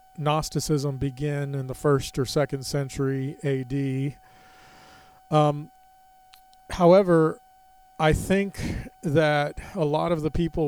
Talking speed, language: 105 wpm, English